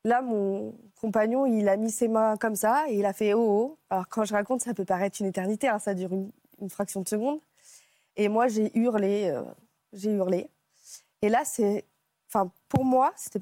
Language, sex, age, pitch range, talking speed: French, female, 20-39, 195-225 Hz, 210 wpm